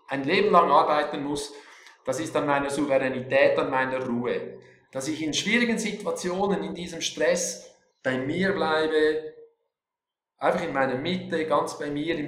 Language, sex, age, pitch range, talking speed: German, male, 50-69, 145-190 Hz, 155 wpm